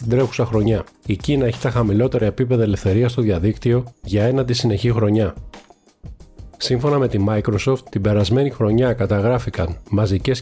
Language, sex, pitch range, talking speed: Greek, male, 105-125 Hz, 145 wpm